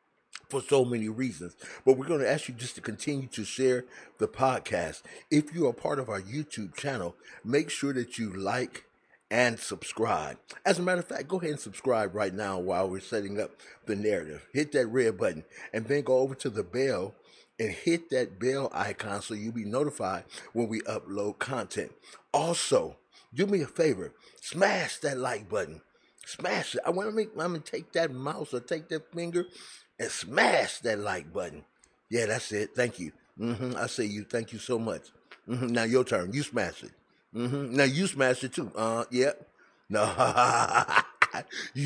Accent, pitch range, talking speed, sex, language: American, 105-135 Hz, 190 wpm, male, English